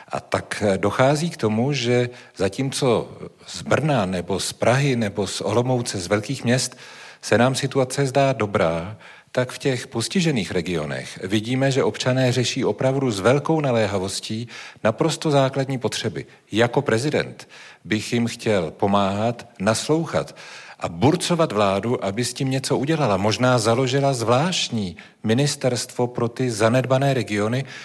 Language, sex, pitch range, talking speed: Czech, male, 105-135 Hz, 135 wpm